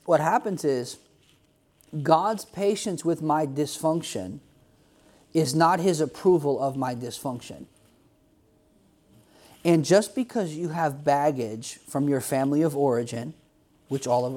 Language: English